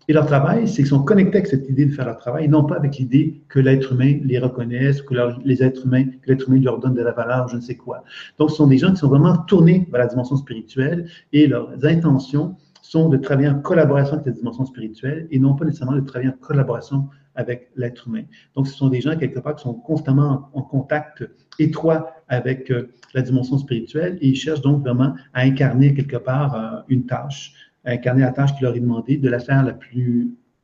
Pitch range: 125-145 Hz